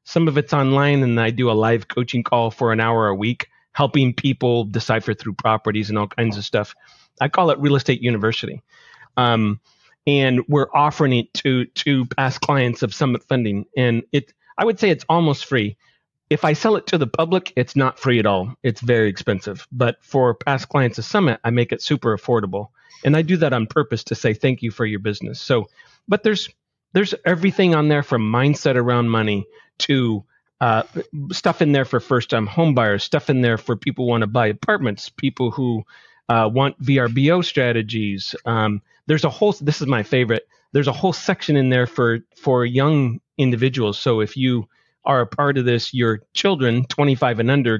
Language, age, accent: English, 40-59, American